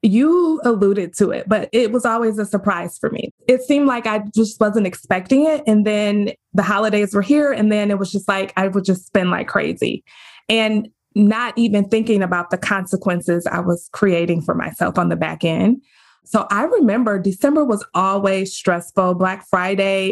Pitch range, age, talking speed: 185-225 Hz, 20-39, 190 wpm